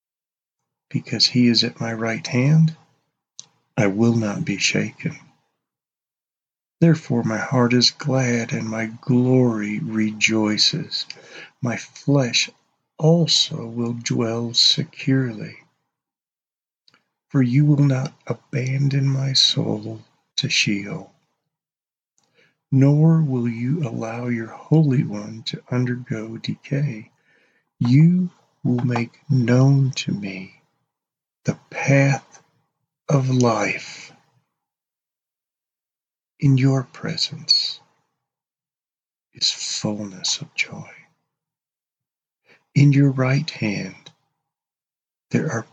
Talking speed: 90 wpm